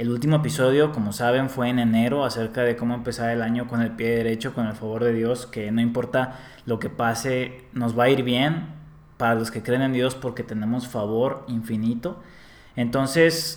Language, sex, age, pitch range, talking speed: Spanish, male, 20-39, 115-145 Hz, 200 wpm